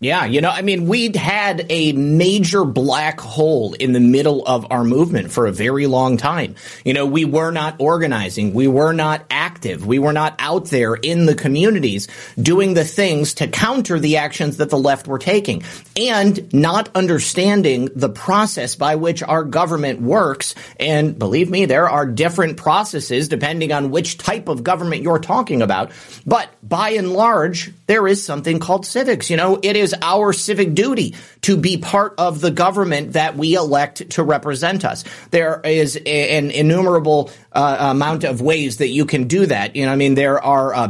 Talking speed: 185 wpm